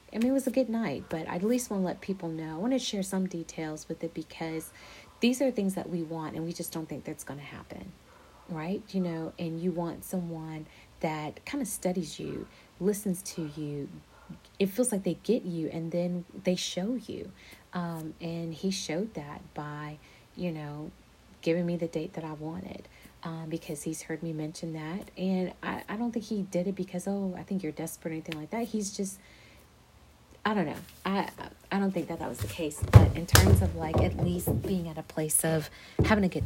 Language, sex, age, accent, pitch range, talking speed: English, female, 30-49, American, 160-205 Hz, 220 wpm